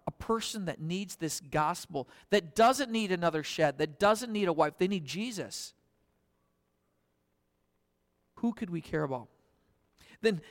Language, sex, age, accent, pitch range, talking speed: English, male, 50-69, American, 150-235 Hz, 145 wpm